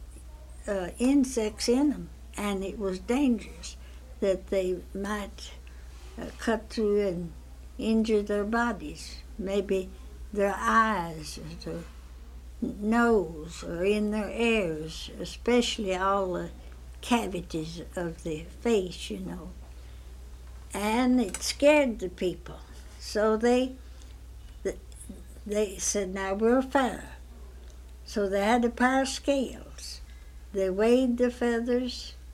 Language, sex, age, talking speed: English, female, 60-79, 115 wpm